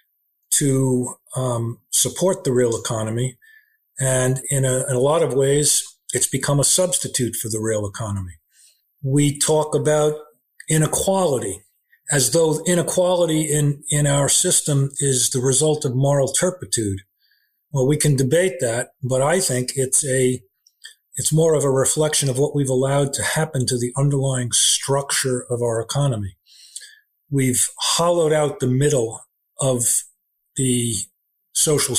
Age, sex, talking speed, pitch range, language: 40-59, male, 140 wpm, 125-150 Hz, English